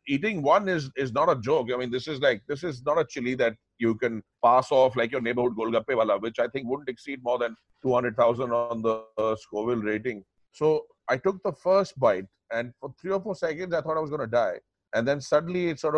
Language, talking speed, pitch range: English, 240 wpm, 120-165 Hz